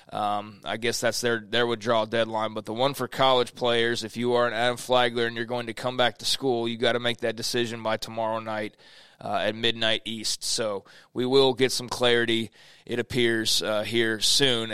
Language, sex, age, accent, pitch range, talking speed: English, male, 20-39, American, 115-130 Hz, 210 wpm